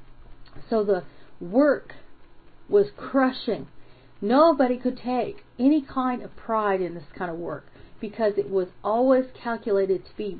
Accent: American